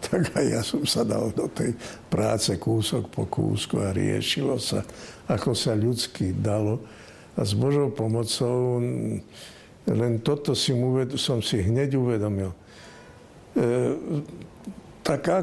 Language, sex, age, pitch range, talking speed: Slovak, male, 60-79, 105-125 Hz, 120 wpm